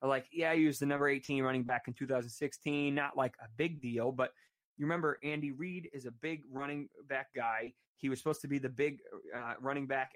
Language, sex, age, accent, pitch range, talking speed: English, male, 20-39, American, 120-145 Hz, 230 wpm